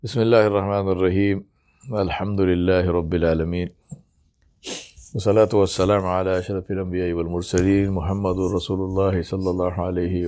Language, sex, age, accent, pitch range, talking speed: English, male, 50-69, Indian, 90-105 Hz, 100 wpm